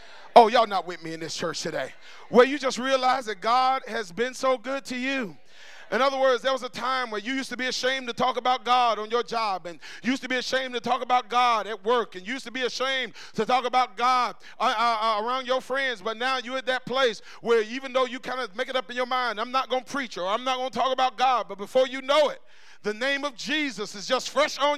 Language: English